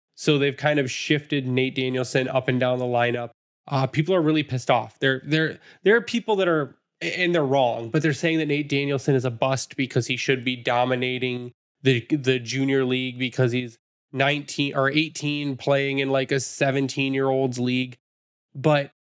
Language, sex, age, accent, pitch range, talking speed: English, male, 20-39, American, 130-155 Hz, 180 wpm